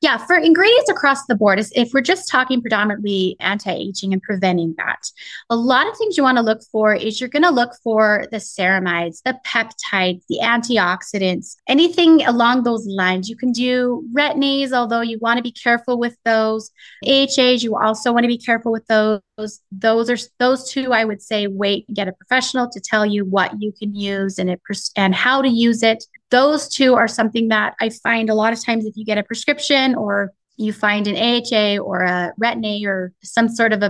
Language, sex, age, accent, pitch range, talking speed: English, female, 20-39, American, 205-250 Hz, 200 wpm